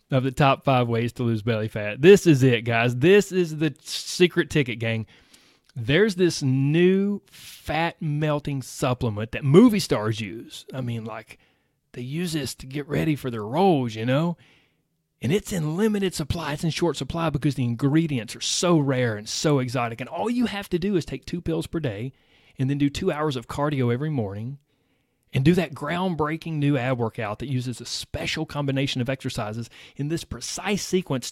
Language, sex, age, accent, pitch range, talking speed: English, male, 30-49, American, 120-165 Hz, 190 wpm